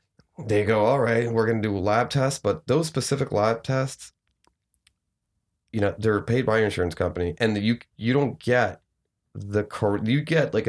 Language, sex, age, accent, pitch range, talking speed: English, male, 30-49, American, 100-120 Hz, 185 wpm